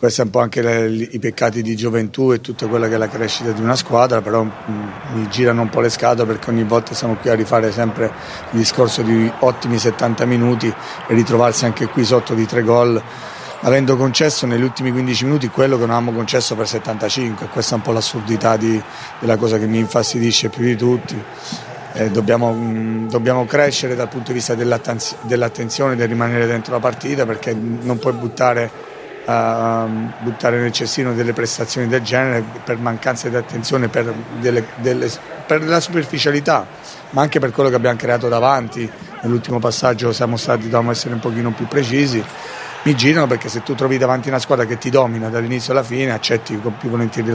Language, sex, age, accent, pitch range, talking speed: Italian, male, 40-59, native, 115-125 Hz, 190 wpm